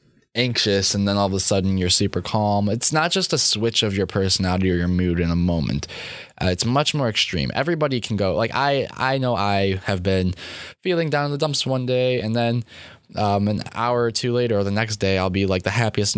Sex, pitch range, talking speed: male, 95-120 Hz, 235 wpm